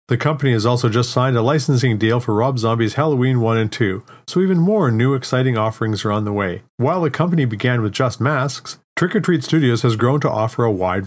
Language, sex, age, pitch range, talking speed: English, male, 40-59, 110-145 Hz, 235 wpm